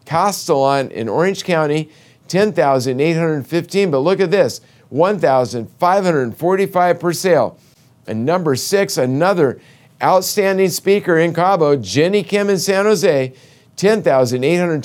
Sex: male